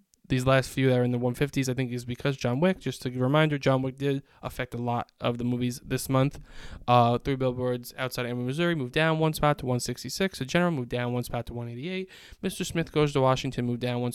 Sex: male